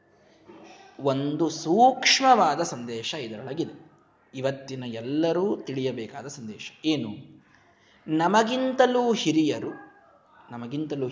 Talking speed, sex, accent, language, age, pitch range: 65 wpm, male, native, Kannada, 20-39, 150-240 Hz